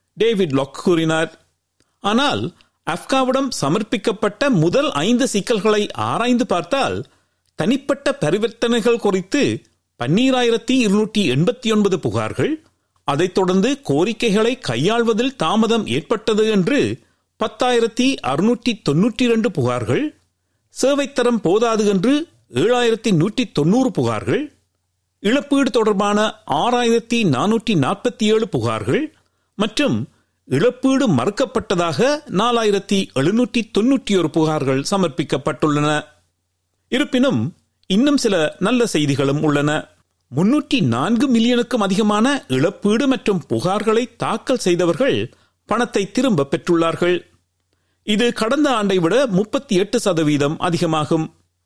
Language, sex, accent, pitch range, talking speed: Tamil, male, native, 160-245 Hz, 70 wpm